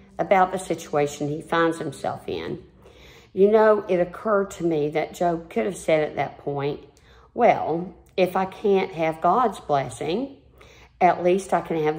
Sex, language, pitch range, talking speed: female, English, 165-195 Hz, 165 wpm